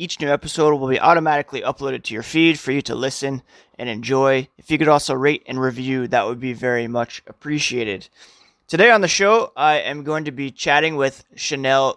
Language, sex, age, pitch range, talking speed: English, male, 30-49, 130-155 Hz, 205 wpm